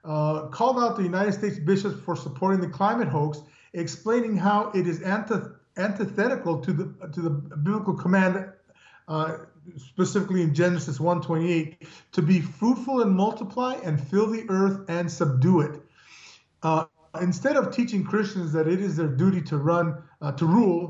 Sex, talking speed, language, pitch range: male, 160 wpm, English, 160-200 Hz